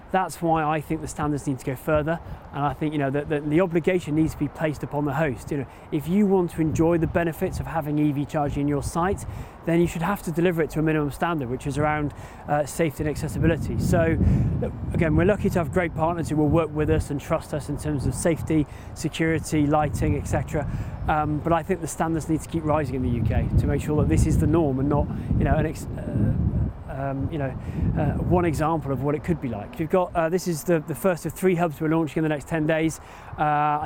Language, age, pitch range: English, 30-49, 145-170 Hz